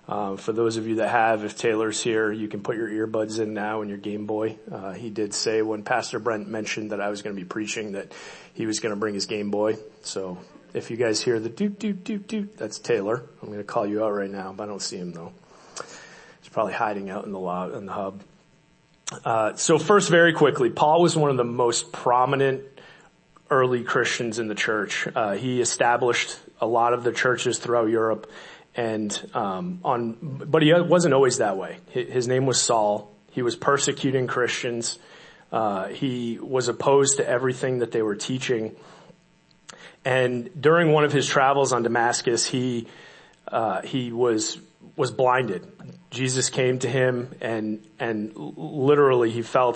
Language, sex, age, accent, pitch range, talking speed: English, male, 30-49, American, 110-130 Hz, 190 wpm